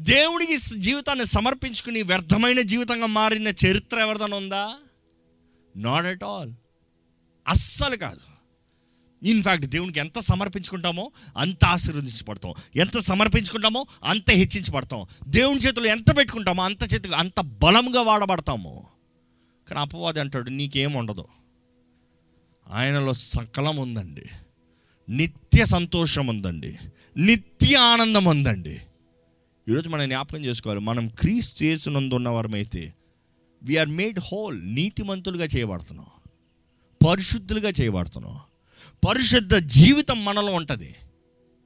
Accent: native